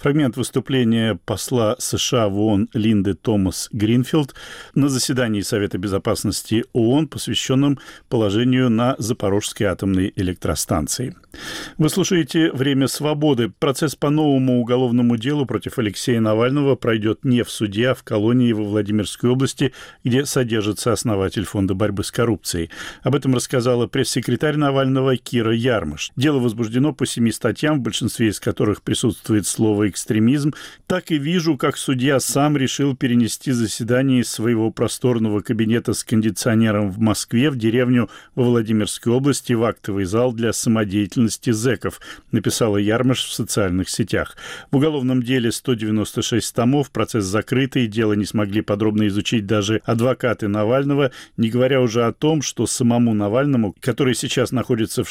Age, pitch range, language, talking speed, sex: 40-59, 110-135 Hz, Russian, 140 wpm, male